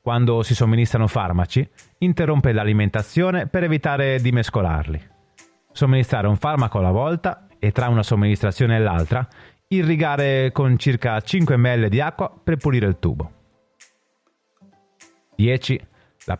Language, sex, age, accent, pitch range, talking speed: Italian, male, 30-49, native, 105-145 Hz, 125 wpm